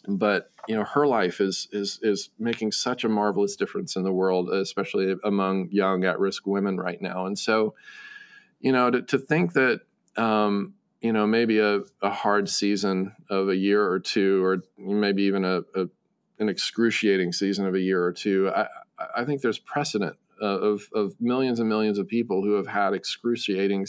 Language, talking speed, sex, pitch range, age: English, 185 wpm, male, 100-125 Hz, 40-59